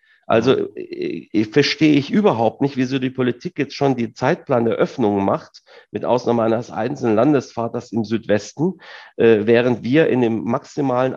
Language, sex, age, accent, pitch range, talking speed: German, male, 40-59, German, 115-145 Hz, 155 wpm